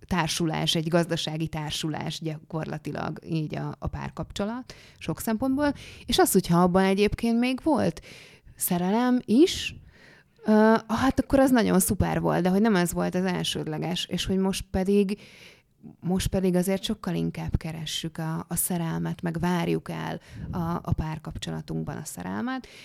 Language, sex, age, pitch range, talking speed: Hungarian, female, 20-39, 160-195 Hz, 145 wpm